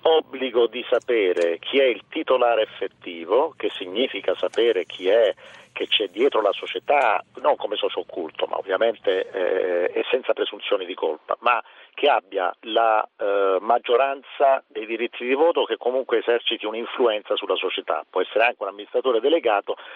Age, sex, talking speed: 50-69, male, 145 wpm